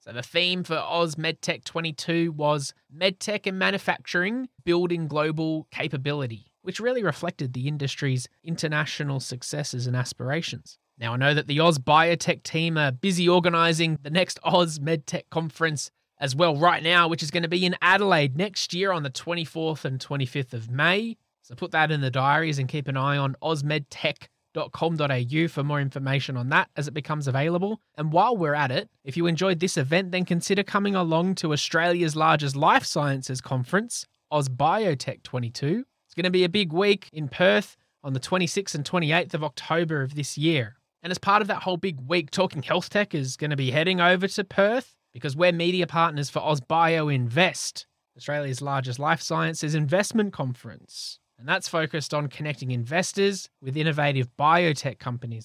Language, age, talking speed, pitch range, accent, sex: English, 20-39, 175 wpm, 135-175 Hz, Australian, male